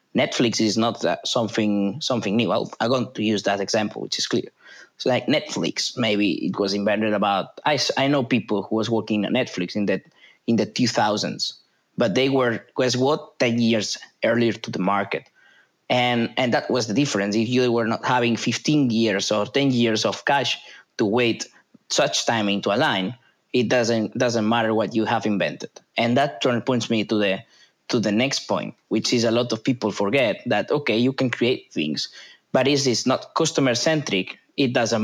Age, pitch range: 20-39, 110-125 Hz